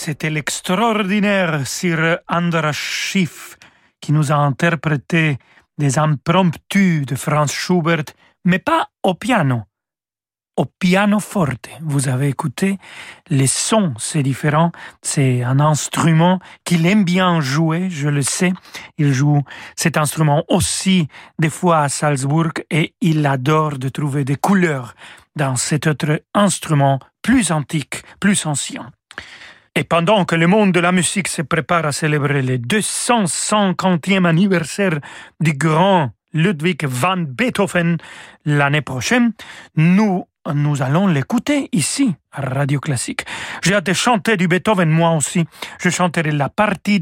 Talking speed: 135 wpm